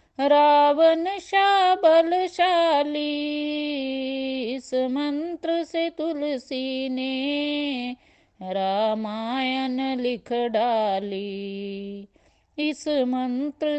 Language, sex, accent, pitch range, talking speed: Hindi, female, native, 220-295 Hz, 55 wpm